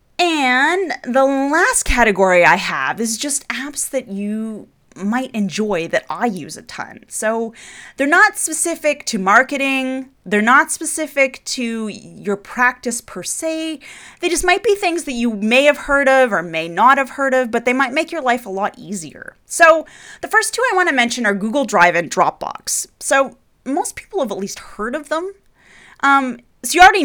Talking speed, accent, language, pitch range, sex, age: 185 wpm, American, English, 205-285 Hz, female, 30-49